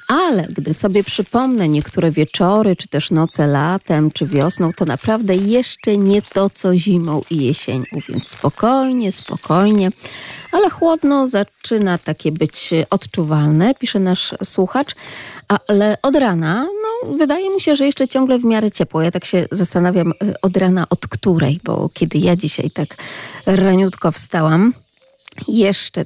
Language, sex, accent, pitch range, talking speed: Polish, female, native, 155-205 Hz, 145 wpm